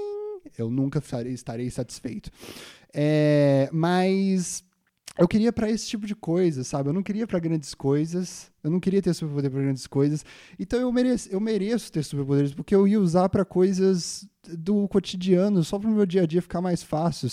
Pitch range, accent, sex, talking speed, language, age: 135-185 Hz, Brazilian, male, 175 wpm, Portuguese, 10-29